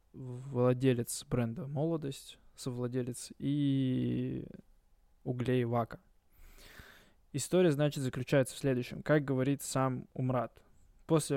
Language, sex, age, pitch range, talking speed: Russian, male, 20-39, 125-150 Hz, 90 wpm